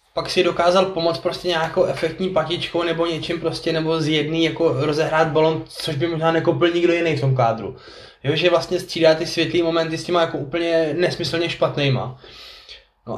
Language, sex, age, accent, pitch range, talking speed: Czech, male, 20-39, native, 135-170 Hz, 175 wpm